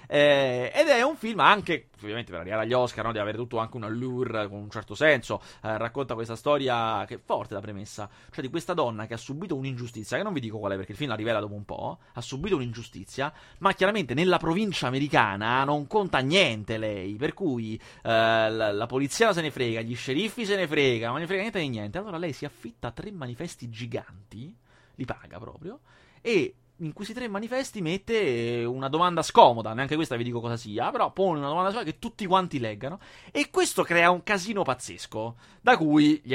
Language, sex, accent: Italian, male, native